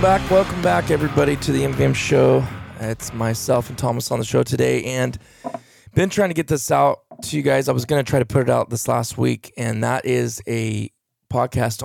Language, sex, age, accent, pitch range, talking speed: English, male, 20-39, American, 110-140 Hz, 220 wpm